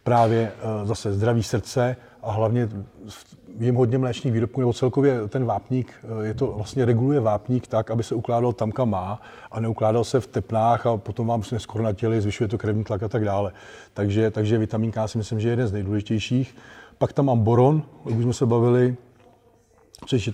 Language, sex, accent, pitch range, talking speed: Czech, male, native, 110-125 Hz, 185 wpm